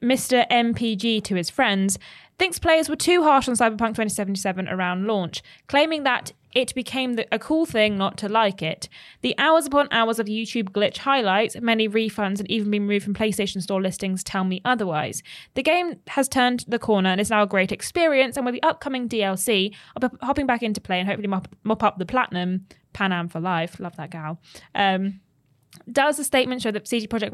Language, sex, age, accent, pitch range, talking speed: English, female, 20-39, British, 190-250 Hz, 205 wpm